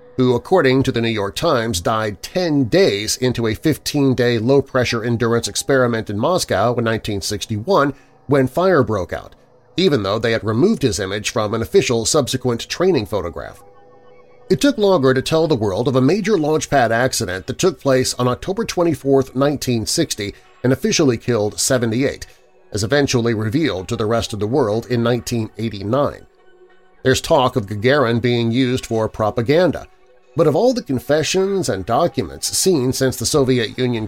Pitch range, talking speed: 115-165 Hz, 160 wpm